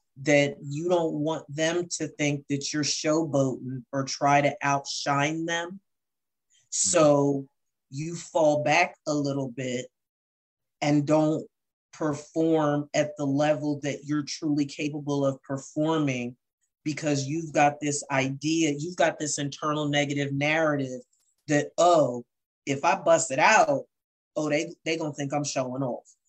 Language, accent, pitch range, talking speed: English, American, 135-155 Hz, 135 wpm